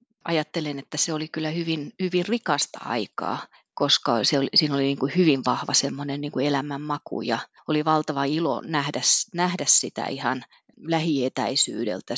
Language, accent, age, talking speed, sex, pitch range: Finnish, native, 30-49, 150 wpm, female, 135-155 Hz